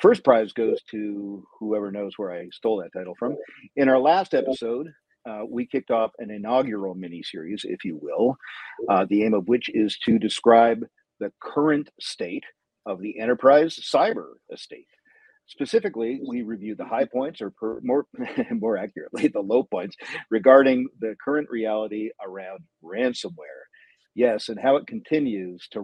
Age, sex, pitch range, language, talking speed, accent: 50-69, male, 105-150 Hz, English, 160 wpm, American